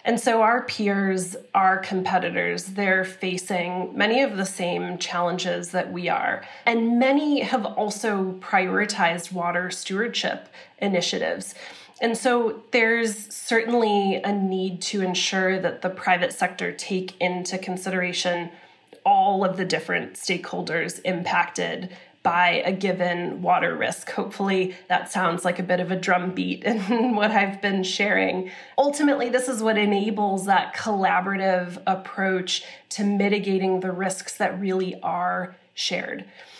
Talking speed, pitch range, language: 130 wpm, 180-215 Hz, English